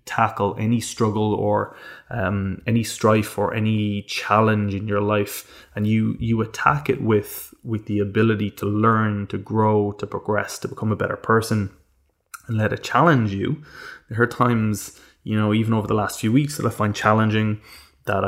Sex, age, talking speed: male, 20-39, 175 wpm